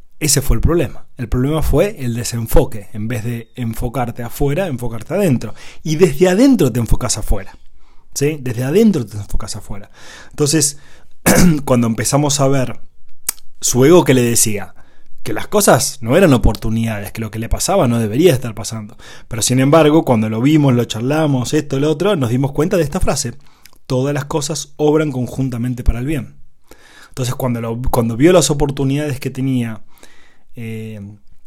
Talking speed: 170 wpm